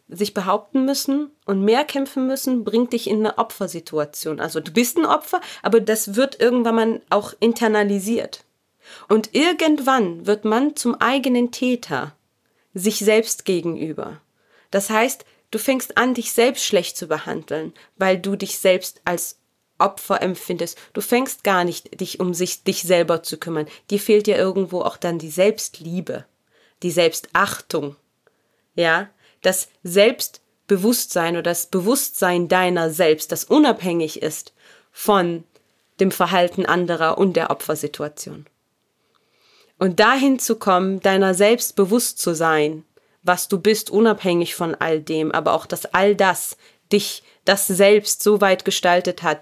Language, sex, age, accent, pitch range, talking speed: German, female, 30-49, German, 170-220 Hz, 140 wpm